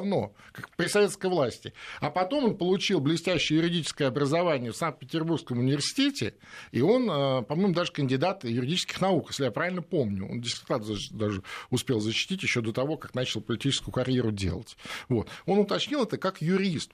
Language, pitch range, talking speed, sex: Russian, 115-175 Hz, 160 wpm, male